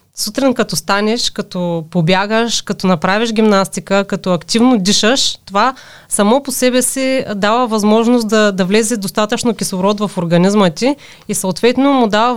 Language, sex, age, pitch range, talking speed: Bulgarian, female, 30-49, 195-235 Hz, 145 wpm